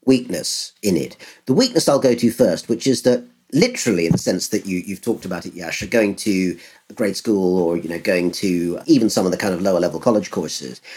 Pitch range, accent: 85-130 Hz, British